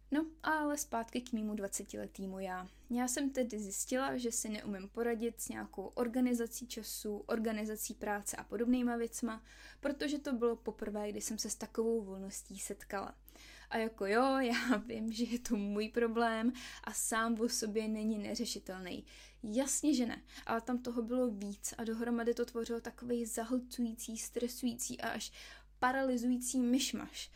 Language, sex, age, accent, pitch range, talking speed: Czech, female, 20-39, native, 215-250 Hz, 155 wpm